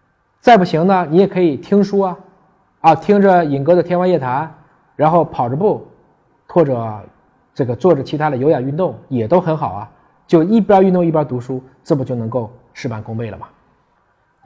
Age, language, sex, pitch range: 20-39, Chinese, male, 130-185 Hz